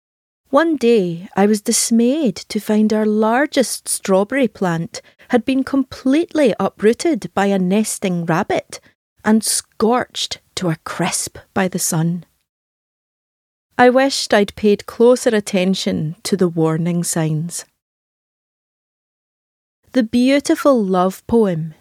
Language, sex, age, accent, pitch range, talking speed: English, female, 30-49, British, 185-245 Hz, 115 wpm